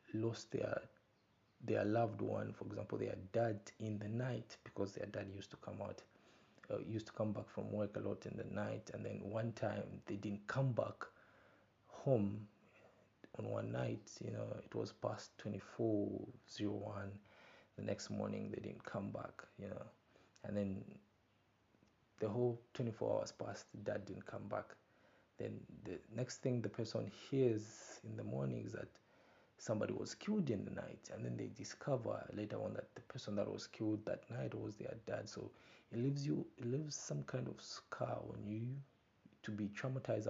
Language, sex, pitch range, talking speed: English, male, 100-120 Hz, 180 wpm